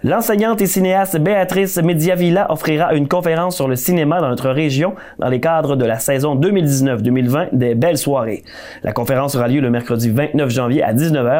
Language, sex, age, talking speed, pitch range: French, male, 30-49, 180 wpm, 130-175 Hz